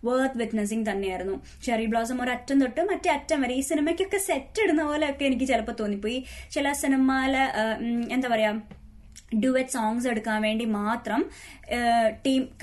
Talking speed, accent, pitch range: 90 wpm, Indian, 220-280 Hz